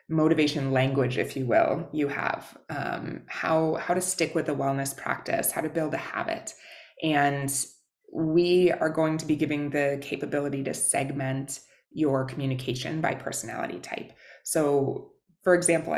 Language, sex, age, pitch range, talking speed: English, female, 20-39, 135-160 Hz, 150 wpm